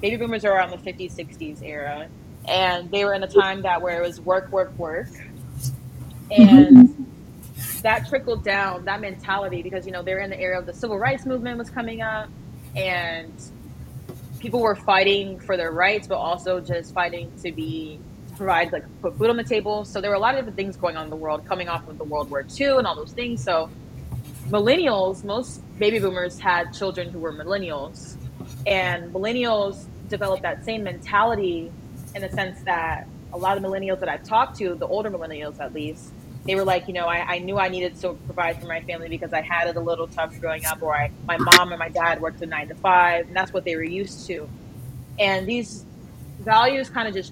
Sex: female